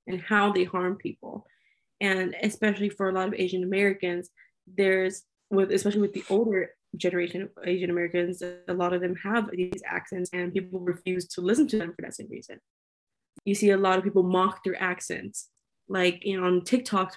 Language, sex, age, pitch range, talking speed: English, female, 20-39, 180-205 Hz, 185 wpm